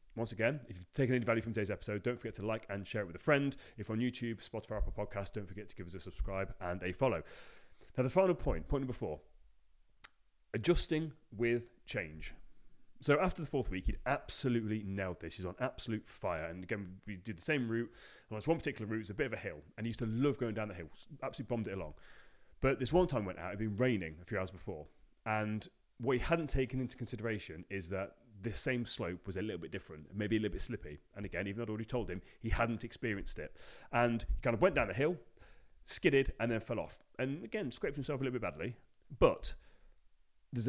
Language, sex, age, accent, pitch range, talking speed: English, male, 30-49, British, 100-130 Hz, 240 wpm